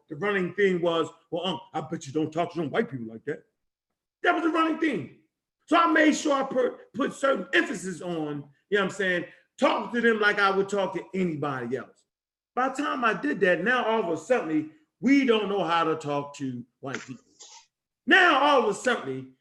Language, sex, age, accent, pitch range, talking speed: English, male, 40-59, American, 175-250 Hz, 215 wpm